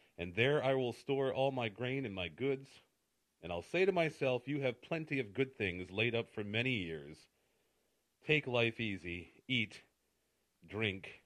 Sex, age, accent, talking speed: male, 40-59, American, 170 wpm